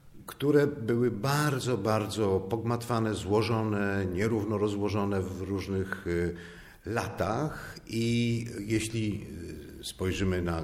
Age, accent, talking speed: 50-69, native, 85 wpm